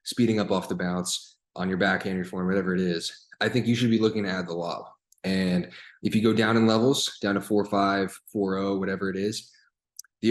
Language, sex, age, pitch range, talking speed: English, male, 20-39, 95-120 Hz, 240 wpm